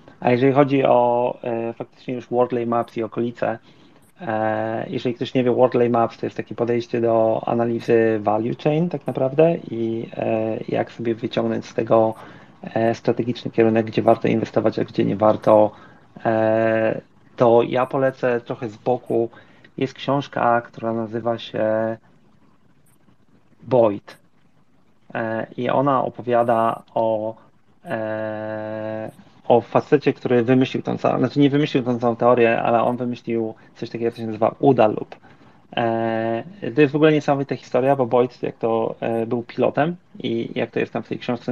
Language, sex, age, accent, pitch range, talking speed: Polish, male, 30-49, native, 115-125 Hz, 145 wpm